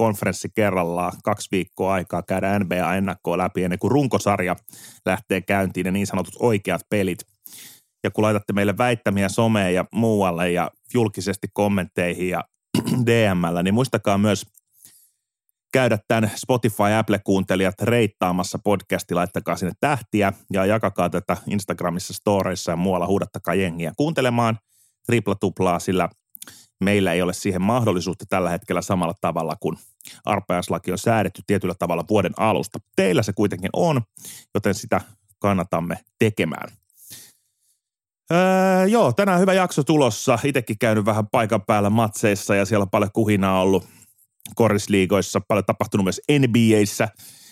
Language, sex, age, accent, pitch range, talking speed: Finnish, male, 30-49, native, 95-115 Hz, 130 wpm